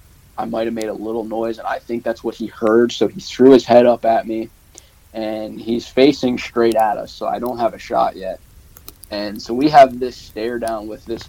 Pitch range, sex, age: 105-125 Hz, male, 20-39